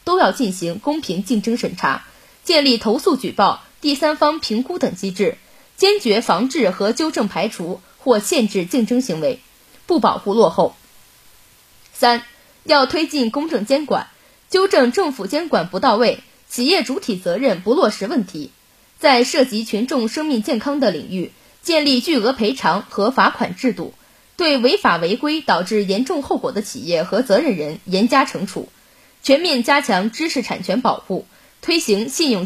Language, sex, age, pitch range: Chinese, female, 20-39, 215-290 Hz